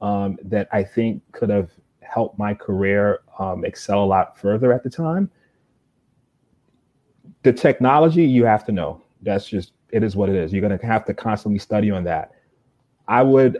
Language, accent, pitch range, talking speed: English, American, 100-125 Hz, 180 wpm